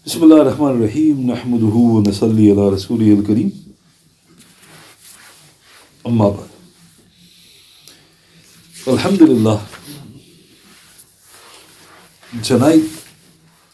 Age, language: 50-69, English